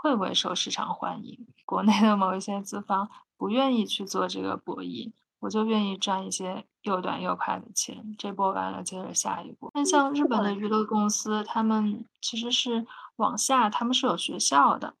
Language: Chinese